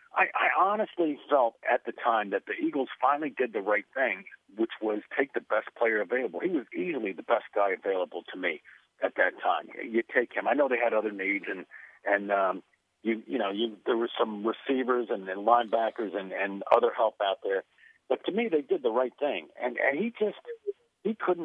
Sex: male